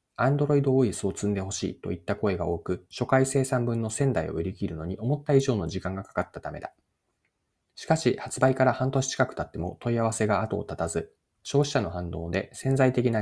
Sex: male